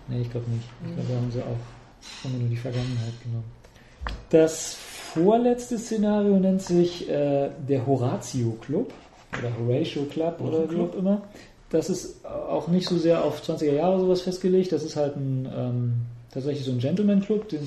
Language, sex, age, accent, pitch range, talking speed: German, male, 40-59, German, 125-155 Hz, 175 wpm